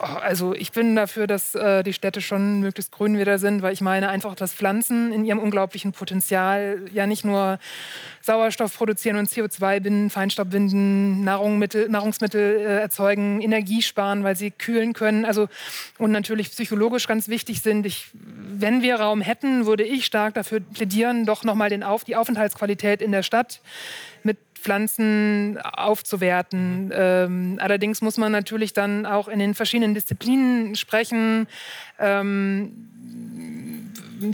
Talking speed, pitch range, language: 145 wpm, 200-220 Hz, German